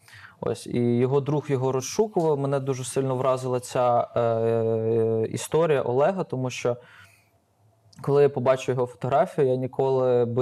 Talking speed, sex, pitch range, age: 140 wpm, male, 120-140 Hz, 20-39